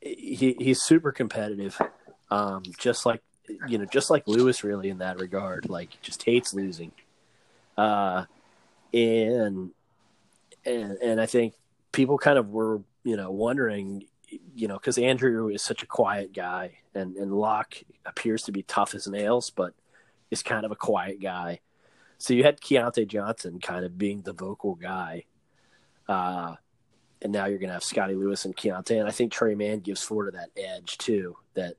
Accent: American